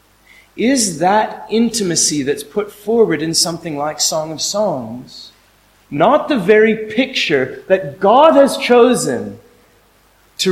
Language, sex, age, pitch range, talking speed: French, male, 30-49, 160-230 Hz, 120 wpm